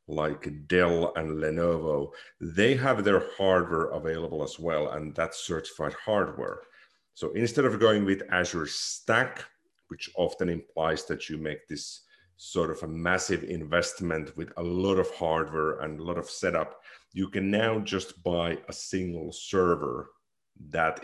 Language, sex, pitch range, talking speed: English, male, 80-95 Hz, 150 wpm